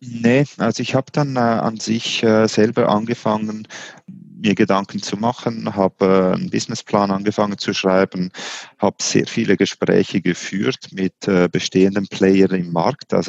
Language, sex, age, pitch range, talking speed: German, male, 30-49, 90-110 Hz, 145 wpm